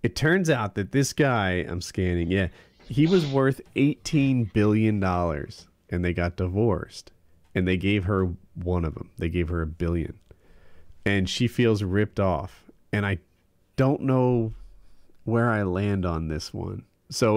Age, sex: 40-59, male